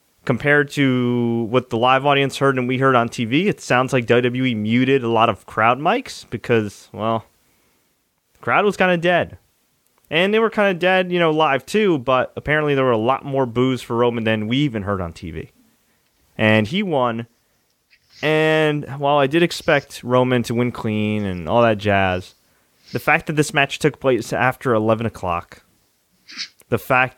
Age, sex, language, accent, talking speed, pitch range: 30-49, male, English, American, 185 wpm, 115-145 Hz